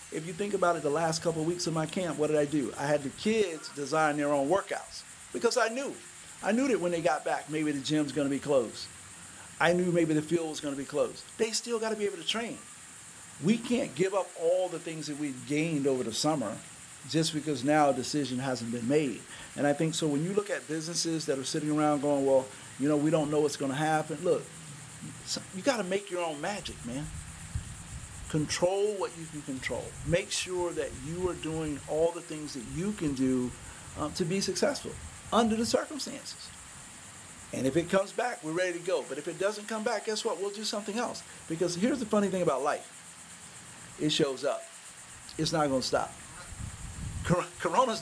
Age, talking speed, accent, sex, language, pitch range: 50-69, 220 wpm, American, male, English, 140-185 Hz